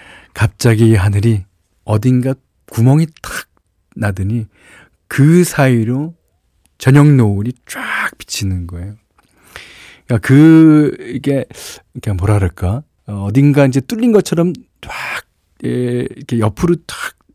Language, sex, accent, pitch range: Korean, male, native, 95-140 Hz